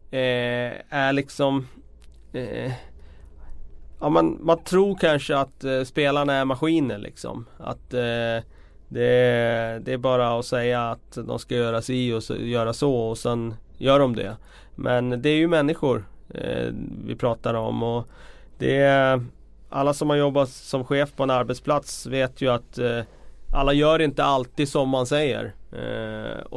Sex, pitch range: male, 115-140 Hz